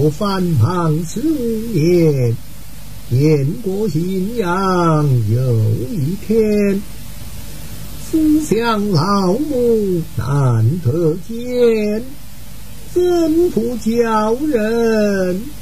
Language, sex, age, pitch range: Chinese, male, 50-69, 130-200 Hz